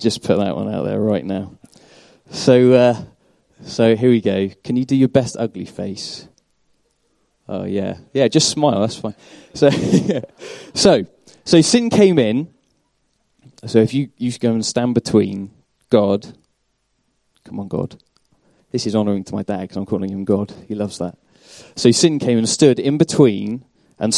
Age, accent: 20-39, British